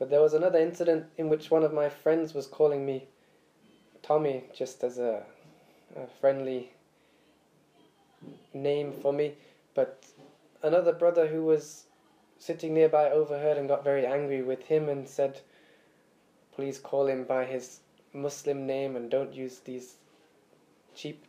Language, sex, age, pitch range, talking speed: English, male, 10-29, 135-150 Hz, 145 wpm